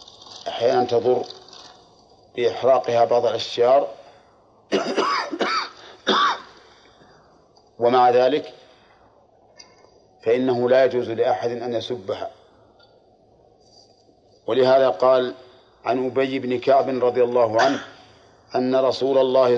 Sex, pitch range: male, 120-130 Hz